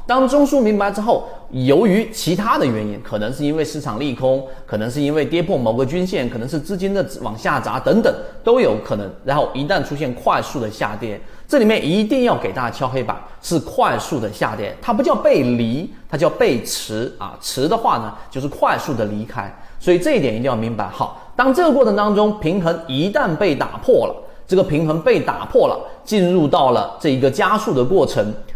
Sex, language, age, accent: male, Chinese, 30-49, native